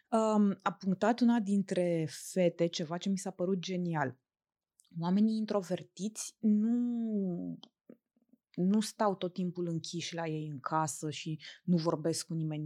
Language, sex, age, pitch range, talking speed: Romanian, female, 20-39, 170-220 Hz, 135 wpm